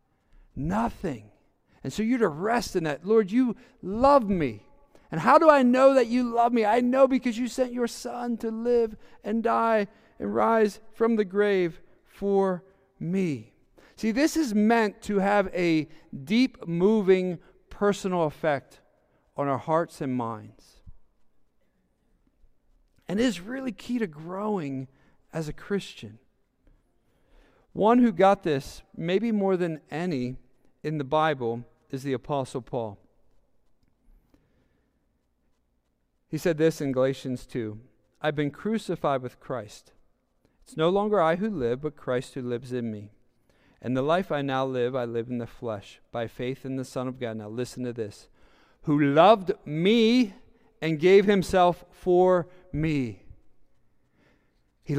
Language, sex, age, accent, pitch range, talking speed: English, male, 50-69, American, 130-210 Hz, 145 wpm